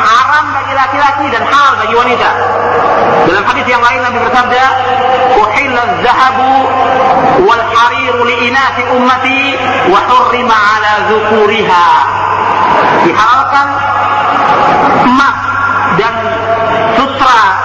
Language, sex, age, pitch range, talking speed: Malay, male, 50-69, 235-270 Hz, 85 wpm